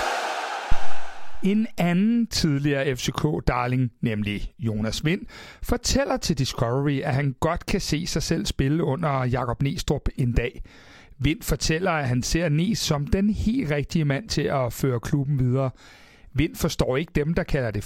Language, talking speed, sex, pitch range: Danish, 155 wpm, male, 130-175 Hz